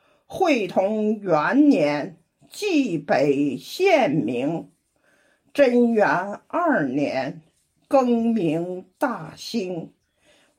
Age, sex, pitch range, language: 50-69, female, 220-295 Hz, Chinese